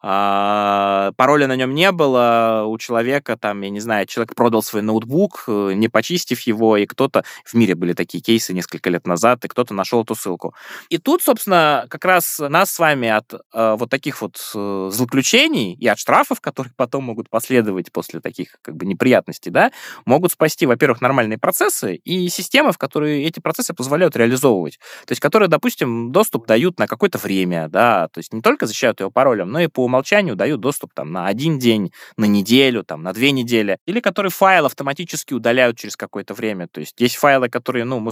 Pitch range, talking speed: 105-145 Hz, 190 wpm